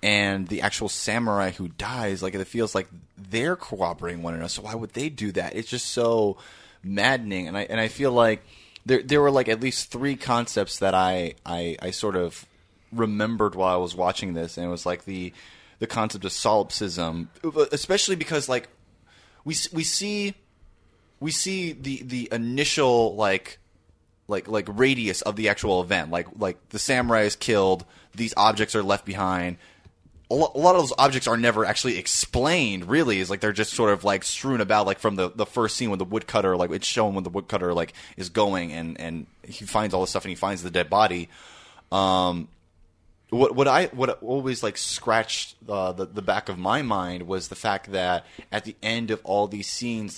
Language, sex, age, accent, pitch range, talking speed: English, male, 20-39, American, 90-115 Hz, 200 wpm